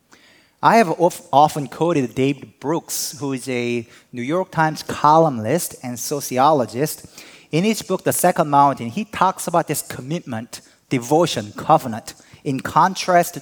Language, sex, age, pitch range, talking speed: English, male, 30-49, 130-175 Hz, 135 wpm